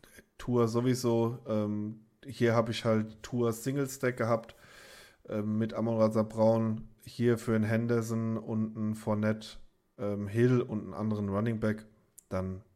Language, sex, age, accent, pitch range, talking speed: German, male, 20-39, German, 105-120 Hz, 140 wpm